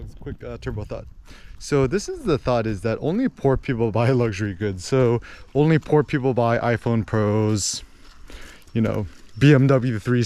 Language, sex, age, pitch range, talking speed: English, male, 20-39, 105-140 Hz, 165 wpm